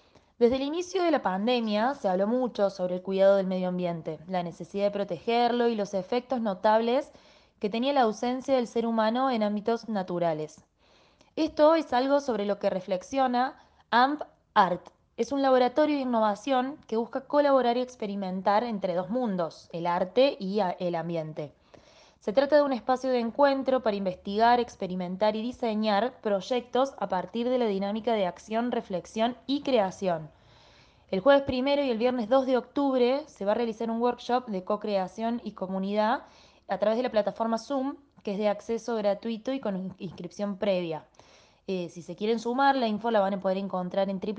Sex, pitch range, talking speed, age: female, 195-250 Hz, 175 wpm, 20-39